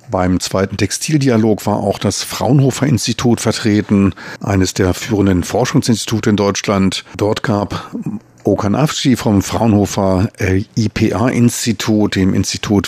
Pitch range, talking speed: 95-110 Hz, 100 wpm